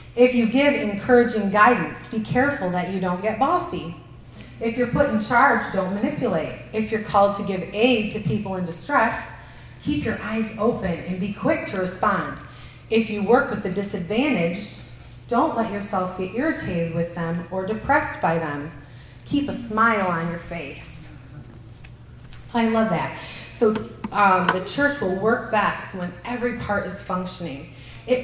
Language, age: English, 30-49